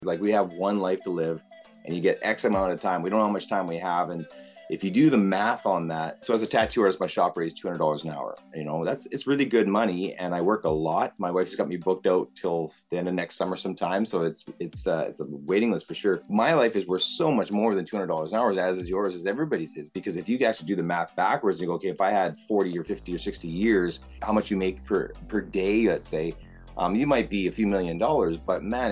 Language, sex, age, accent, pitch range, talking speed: English, male, 30-49, American, 80-100 Hz, 280 wpm